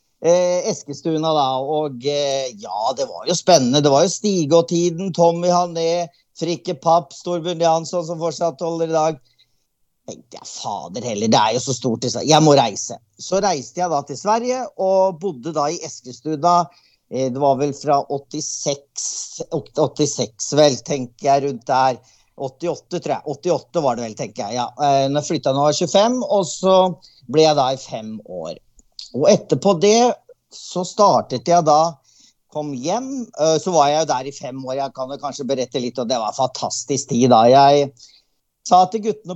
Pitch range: 140-195 Hz